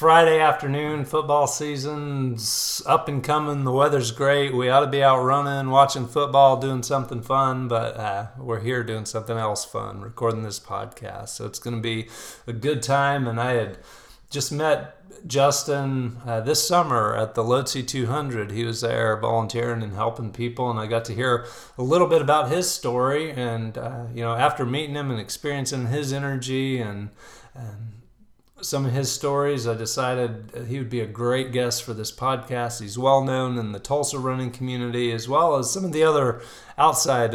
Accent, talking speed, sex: American, 185 wpm, male